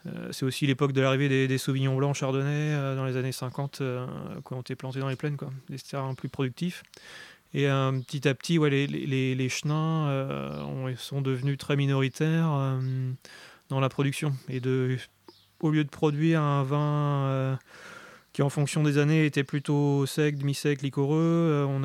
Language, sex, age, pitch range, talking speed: French, male, 30-49, 130-150 Hz, 185 wpm